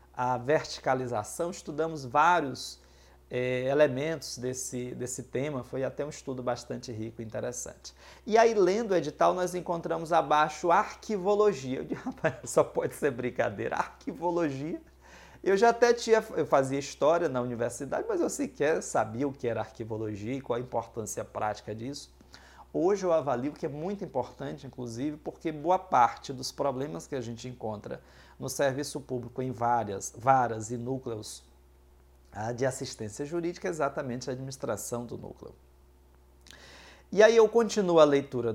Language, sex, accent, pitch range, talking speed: Portuguese, male, Brazilian, 110-160 Hz, 150 wpm